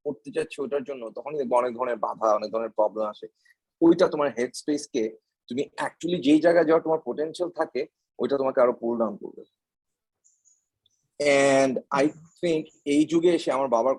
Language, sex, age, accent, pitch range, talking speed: Bengali, male, 30-49, native, 120-170 Hz, 75 wpm